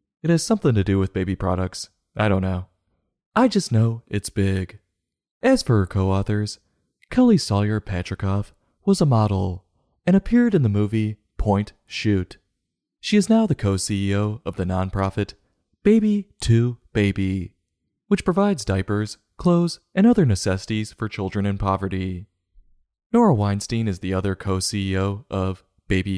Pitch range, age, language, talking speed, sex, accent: 95-115 Hz, 20-39, English, 150 wpm, male, American